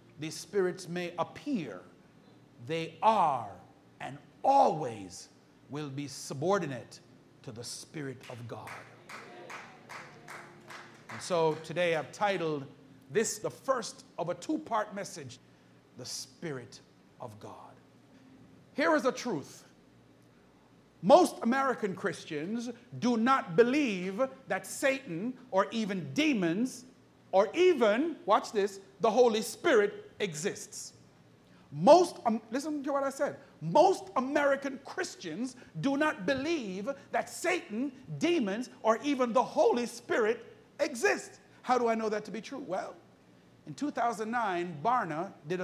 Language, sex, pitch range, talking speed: English, male, 165-270 Hz, 120 wpm